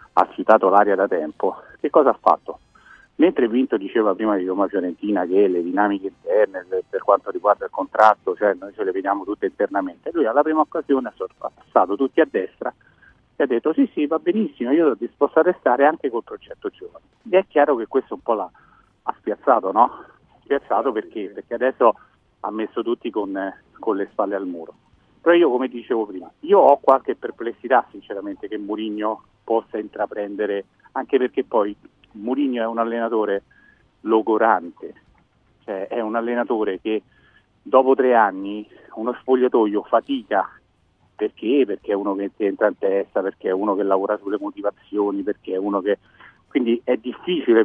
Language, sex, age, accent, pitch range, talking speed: Italian, male, 40-59, native, 105-160 Hz, 175 wpm